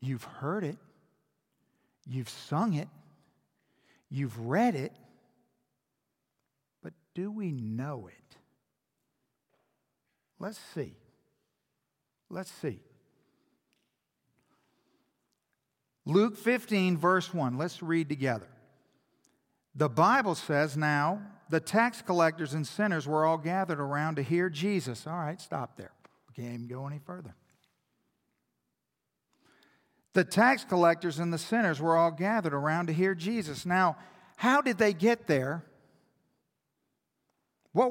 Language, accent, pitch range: English, American, 165-225 Hz